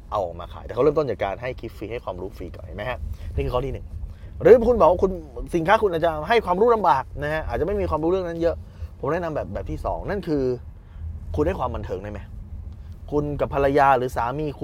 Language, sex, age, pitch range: Thai, male, 20-39, 95-150 Hz